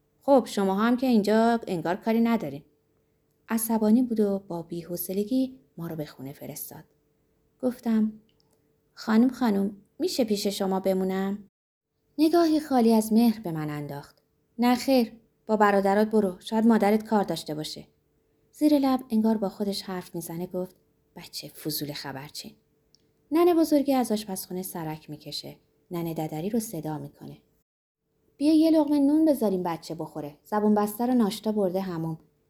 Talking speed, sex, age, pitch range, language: 140 wpm, female, 20-39, 160-225 Hz, Persian